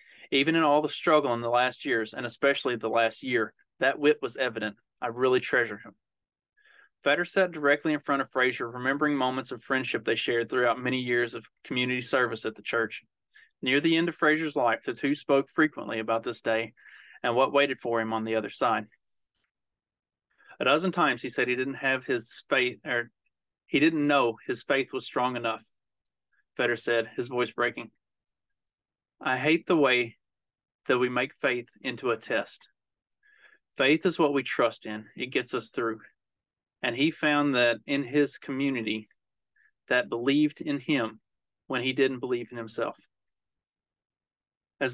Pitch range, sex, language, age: 120-145 Hz, male, English, 20-39